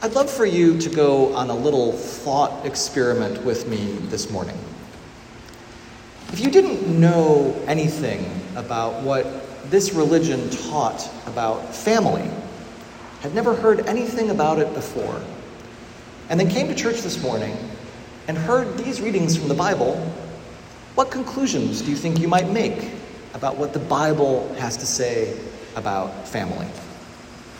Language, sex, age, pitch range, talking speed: English, male, 40-59, 120-185 Hz, 140 wpm